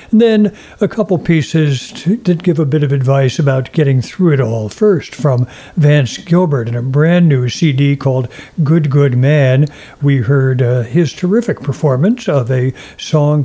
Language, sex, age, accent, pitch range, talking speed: English, male, 60-79, American, 130-170 Hz, 165 wpm